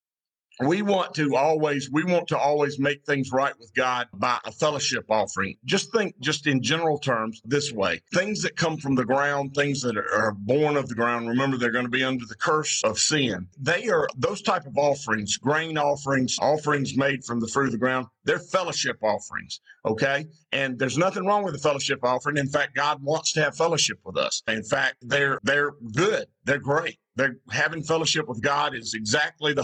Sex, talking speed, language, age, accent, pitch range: male, 200 wpm, English, 50-69, American, 125-150 Hz